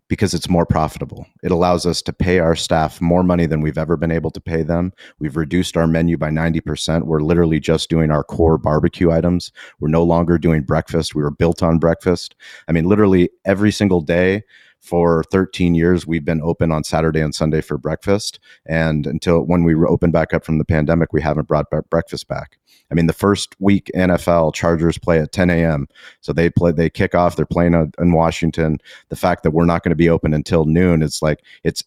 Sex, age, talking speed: male, 30-49, 215 wpm